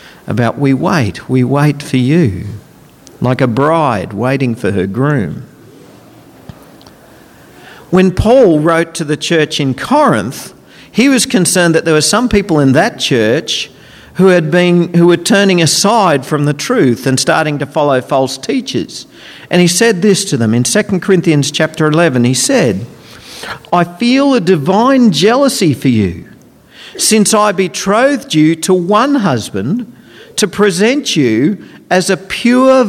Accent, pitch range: Australian, 150-210 Hz